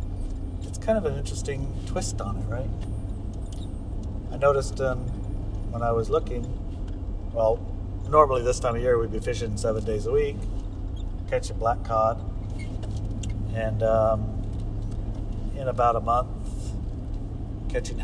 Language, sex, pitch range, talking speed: English, male, 95-120 Hz, 125 wpm